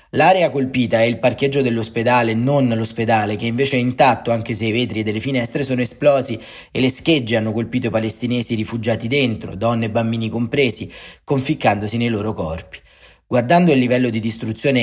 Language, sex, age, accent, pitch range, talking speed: Italian, male, 30-49, native, 110-130 Hz, 175 wpm